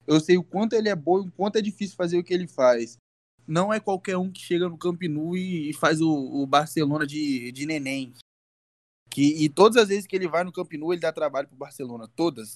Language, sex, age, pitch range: Portuguese, male, 20-39, 140-185 Hz